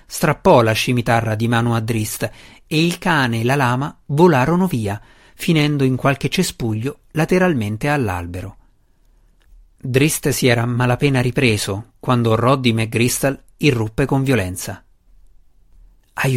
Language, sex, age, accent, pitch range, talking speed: Italian, male, 50-69, native, 110-155 Hz, 120 wpm